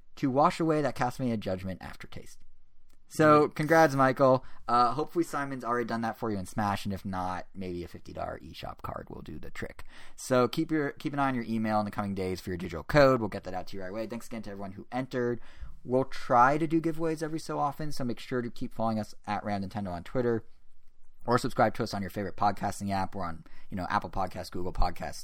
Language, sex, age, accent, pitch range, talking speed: English, male, 20-39, American, 95-125 Hz, 245 wpm